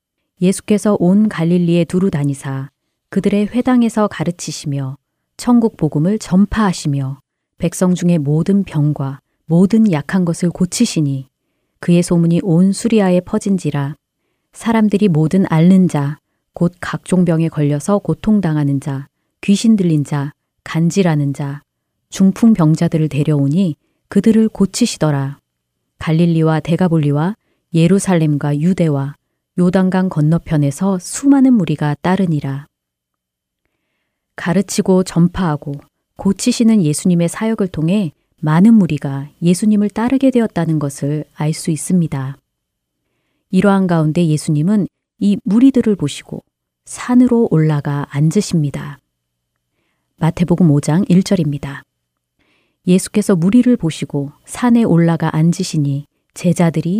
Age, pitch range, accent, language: 30-49, 145-195 Hz, native, Korean